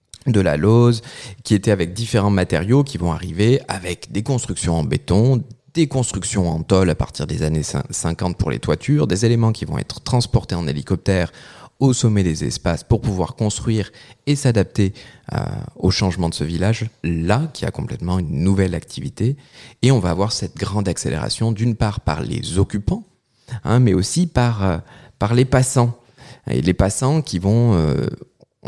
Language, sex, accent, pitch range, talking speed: French, male, French, 90-120 Hz, 175 wpm